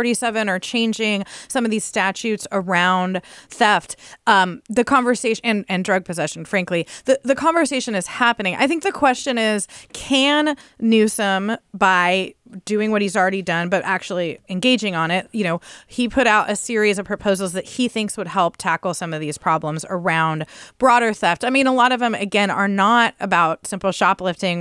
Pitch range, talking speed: 180-235 Hz, 185 wpm